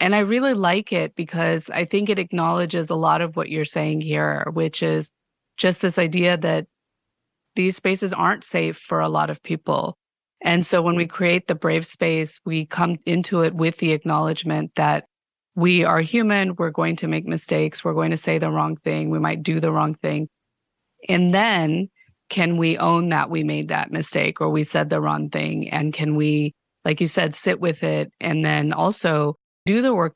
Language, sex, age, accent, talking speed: English, female, 30-49, American, 200 wpm